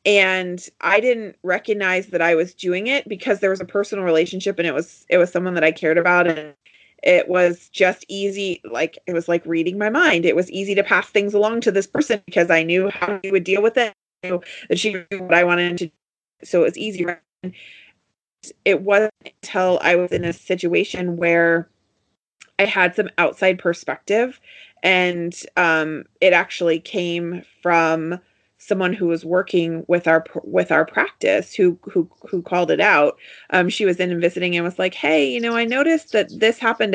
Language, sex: English, female